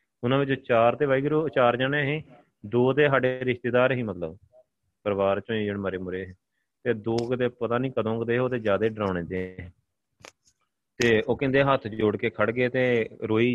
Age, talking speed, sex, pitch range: 30-49, 195 wpm, male, 110-135 Hz